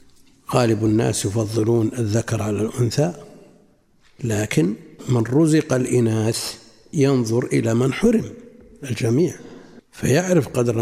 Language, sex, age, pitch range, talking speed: Arabic, male, 60-79, 115-145 Hz, 95 wpm